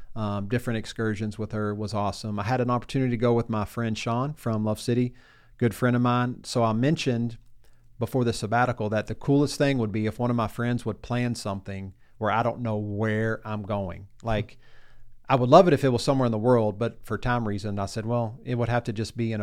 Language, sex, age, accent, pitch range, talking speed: English, male, 40-59, American, 105-120 Hz, 240 wpm